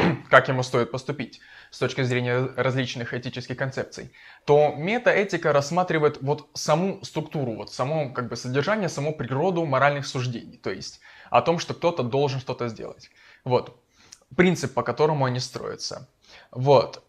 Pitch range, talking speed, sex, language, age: 125-155 Hz, 145 wpm, male, Russian, 20-39